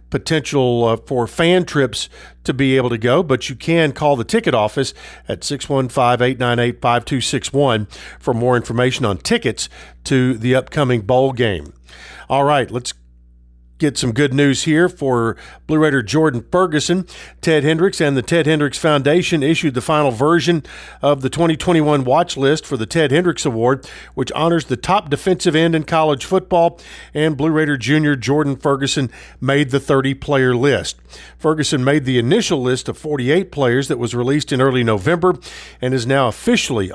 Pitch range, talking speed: 125-155 Hz, 160 wpm